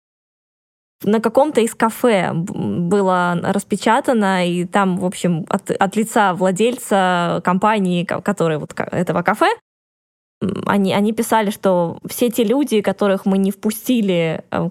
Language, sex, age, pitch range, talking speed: Russian, female, 20-39, 180-225 Hz, 120 wpm